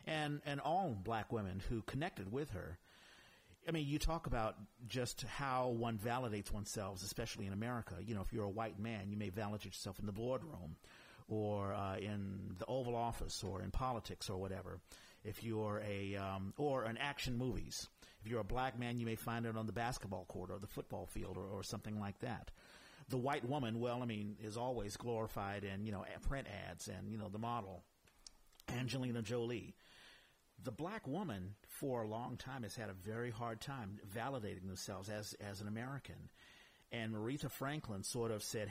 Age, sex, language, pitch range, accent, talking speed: 50-69, male, English, 100-125 Hz, American, 190 wpm